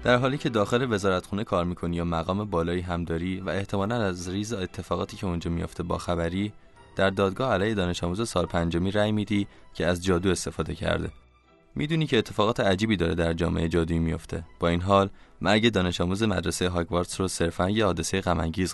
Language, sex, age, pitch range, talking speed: Persian, male, 20-39, 85-105 Hz, 180 wpm